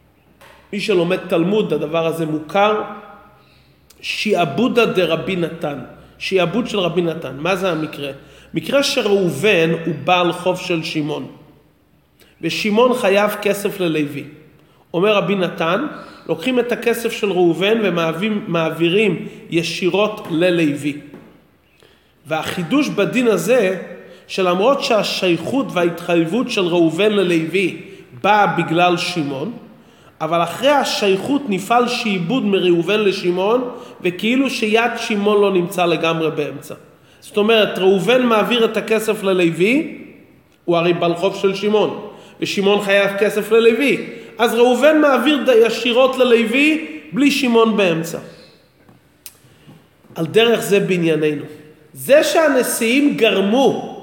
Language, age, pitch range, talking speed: Hebrew, 30-49, 170-230 Hz, 105 wpm